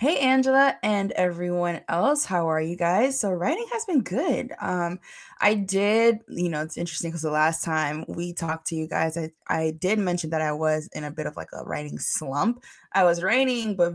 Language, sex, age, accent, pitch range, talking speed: English, female, 20-39, American, 160-200 Hz, 210 wpm